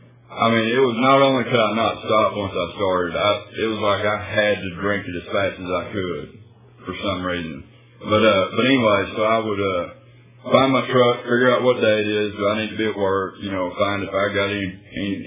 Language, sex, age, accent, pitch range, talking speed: English, male, 20-39, American, 100-120 Hz, 245 wpm